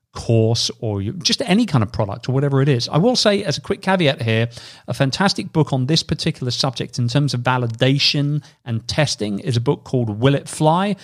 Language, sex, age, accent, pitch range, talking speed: English, male, 40-59, British, 120-155 Hz, 210 wpm